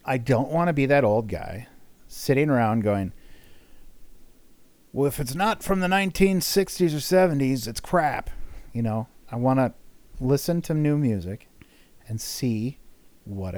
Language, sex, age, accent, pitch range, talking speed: English, male, 40-59, American, 100-140 Hz, 150 wpm